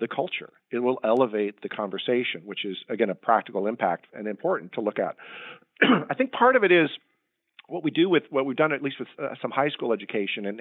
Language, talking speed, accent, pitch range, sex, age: English, 225 wpm, American, 105-130 Hz, male, 40-59